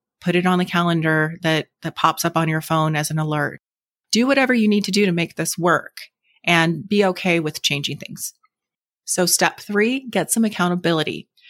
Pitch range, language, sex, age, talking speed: 170-205 Hz, English, female, 30-49, 195 wpm